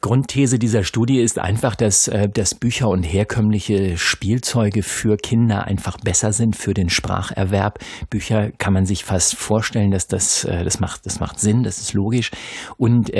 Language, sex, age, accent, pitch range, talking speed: German, male, 50-69, German, 100-120 Hz, 165 wpm